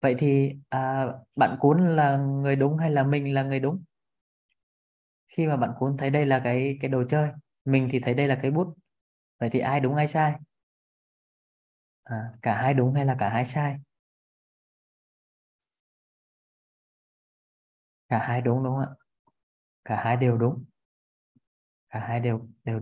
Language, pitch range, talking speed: Vietnamese, 110-135 Hz, 160 wpm